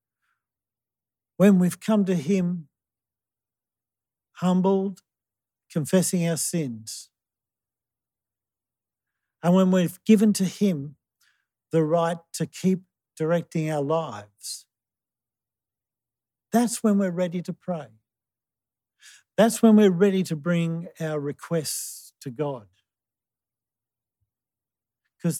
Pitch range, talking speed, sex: 115-175 Hz, 90 wpm, male